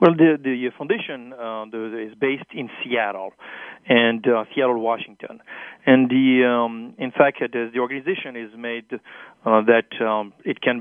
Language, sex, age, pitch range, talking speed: English, male, 40-59, 115-140 Hz, 165 wpm